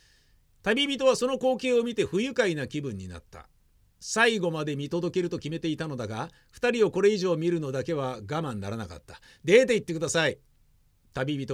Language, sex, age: Japanese, male, 50-69